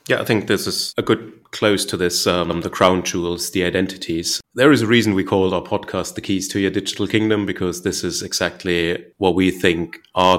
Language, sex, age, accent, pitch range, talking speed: English, male, 30-49, German, 85-95 Hz, 220 wpm